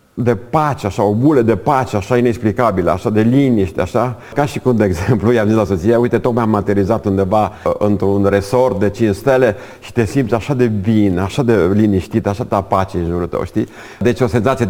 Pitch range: 100-125 Hz